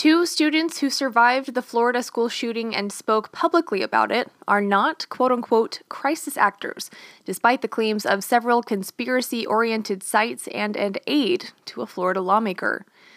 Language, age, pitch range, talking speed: English, 20-39, 200-255 Hz, 155 wpm